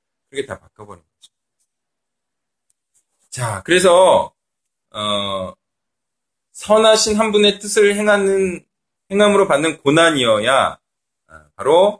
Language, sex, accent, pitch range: Korean, male, native, 135-205 Hz